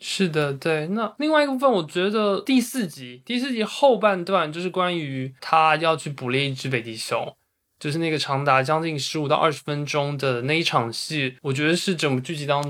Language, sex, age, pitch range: Chinese, male, 20-39, 130-165 Hz